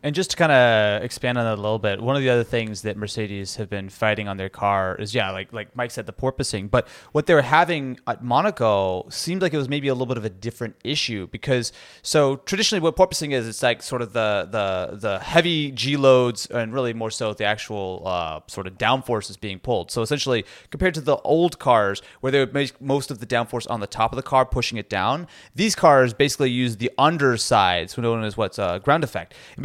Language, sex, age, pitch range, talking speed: English, male, 30-49, 115-145 Hz, 240 wpm